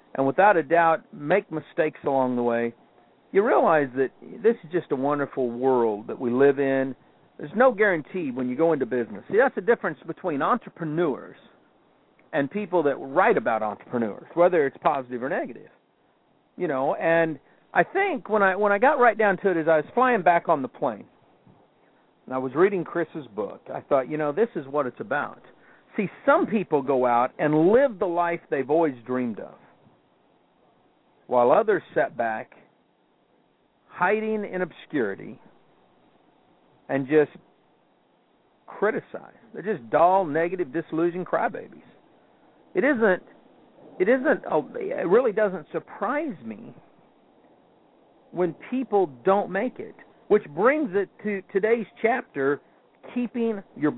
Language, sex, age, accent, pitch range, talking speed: English, male, 50-69, American, 150-215 Hz, 145 wpm